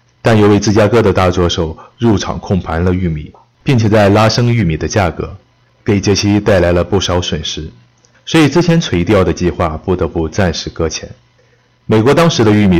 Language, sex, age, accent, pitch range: Chinese, male, 30-49, native, 85-120 Hz